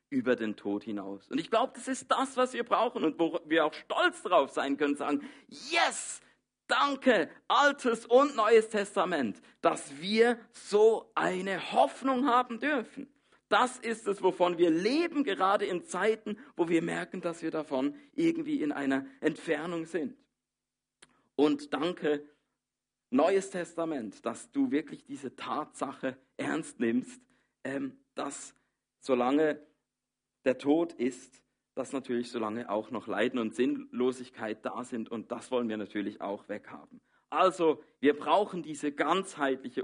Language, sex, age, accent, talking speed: German, male, 50-69, German, 140 wpm